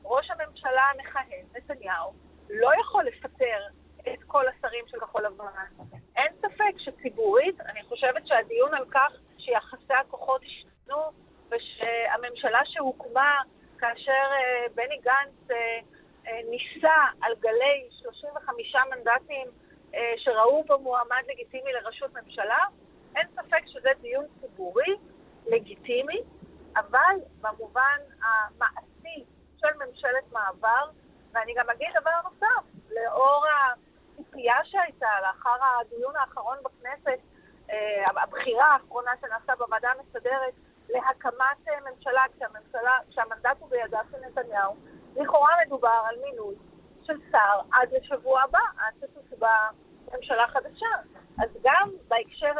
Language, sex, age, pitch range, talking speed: Hebrew, female, 40-59, 240-310 Hz, 105 wpm